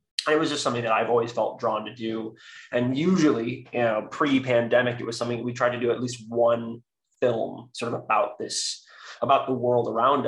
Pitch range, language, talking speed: 115-130 Hz, English, 205 wpm